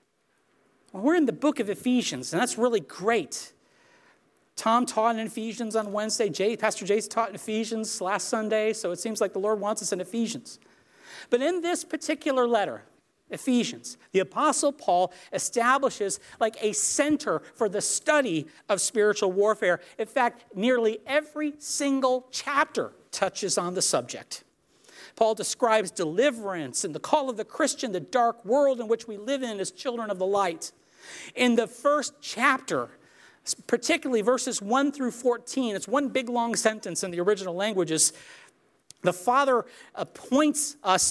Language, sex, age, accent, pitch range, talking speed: English, male, 50-69, American, 195-265 Hz, 155 wpm